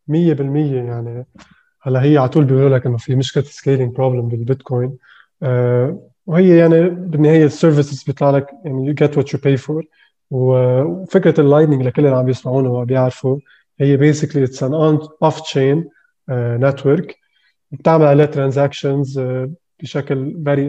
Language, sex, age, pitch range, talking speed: Arabic, male, 20-39, 130-150 Hz, 140 wpm